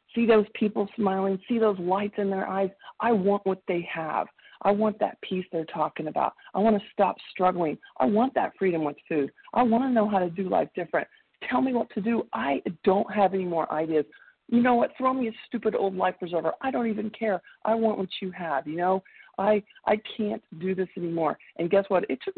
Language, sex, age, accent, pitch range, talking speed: English, female, 50-69, American, 165-200 Hz, 230 wpm